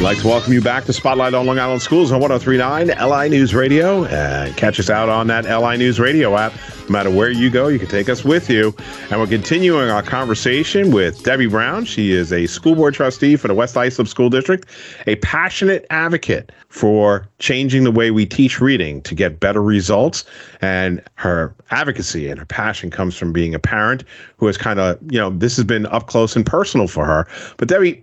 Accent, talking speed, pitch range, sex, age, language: American, 210 wpm, 95-125 Hz, male, 40-59, English